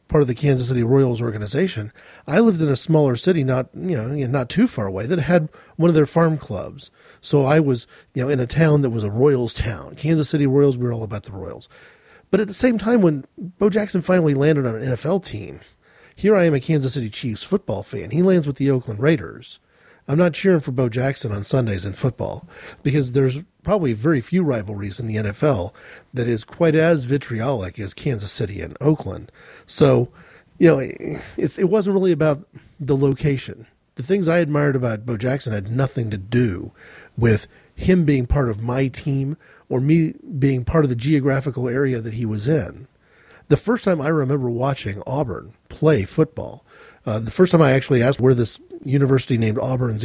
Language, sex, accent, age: English, male, American, 40-59